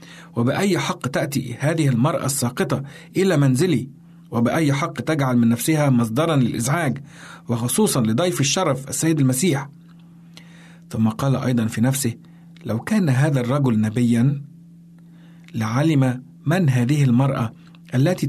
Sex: male